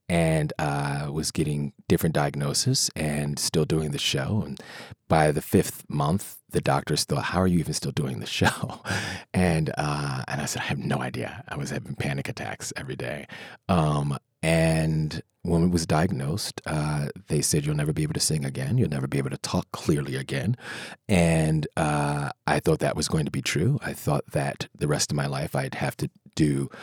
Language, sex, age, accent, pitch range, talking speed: English, male, 30-49, American, 70-85 Hz, 200 wpm